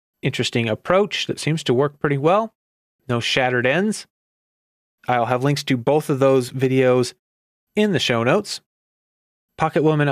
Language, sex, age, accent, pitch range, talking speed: English, male, 30-49, American, 120-150 Hz, 150 wpm